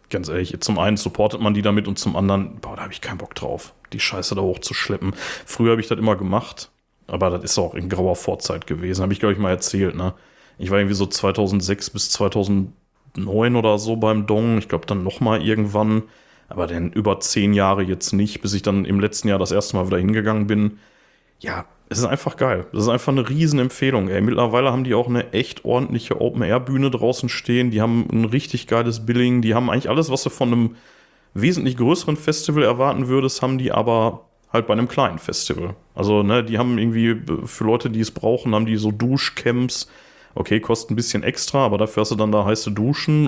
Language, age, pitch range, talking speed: German, 30-49, 100-120 Hz, 210 wpm